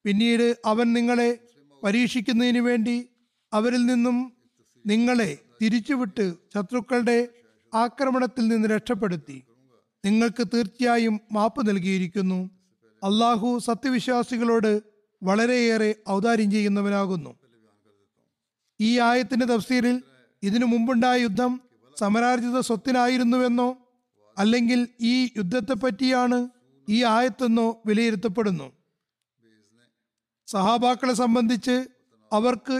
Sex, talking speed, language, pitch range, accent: male, 70 wpm, Malayalam, 205-245 Hz, native